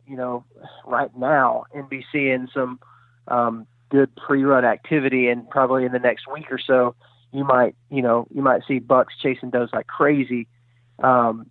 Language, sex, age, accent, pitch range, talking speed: English, male, 30-49, American, 120-140 Hz, 170 wpm